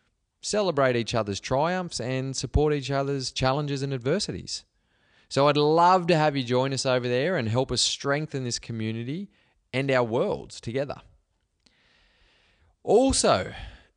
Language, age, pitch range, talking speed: English, 20-39, 105-145 Hz, 135 wpm